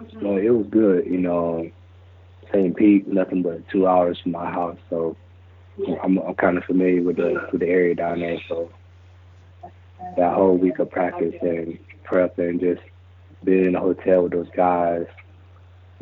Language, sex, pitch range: English, male, 85-90 Hz